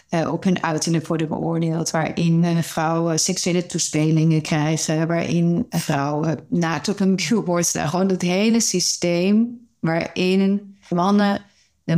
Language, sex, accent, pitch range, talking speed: Dutch, female, Dutch, 155-180 Hz, 130 wpm